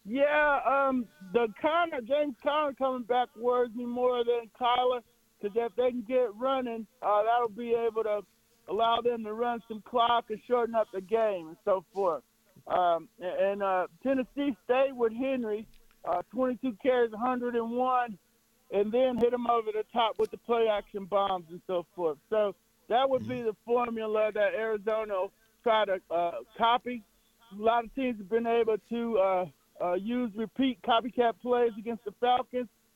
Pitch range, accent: 210-245 Hz, American